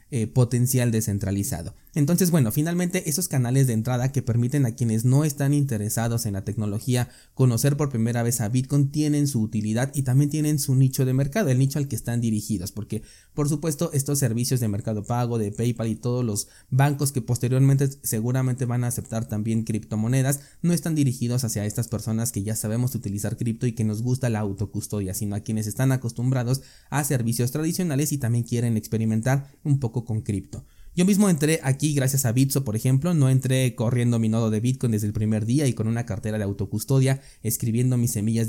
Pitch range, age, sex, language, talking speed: 110-140 Hz, 20-39, male, Spanish, 195 wpm